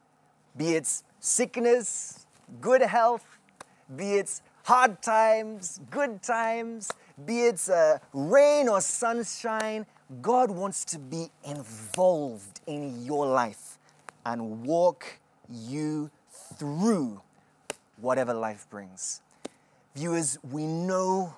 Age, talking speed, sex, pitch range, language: 30-49, 95 wpm, male, 150-240 Hz, English